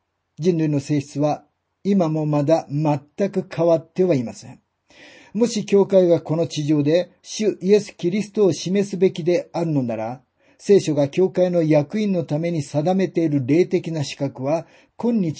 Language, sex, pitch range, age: Japanese, male, 140-185 Hz, 50-69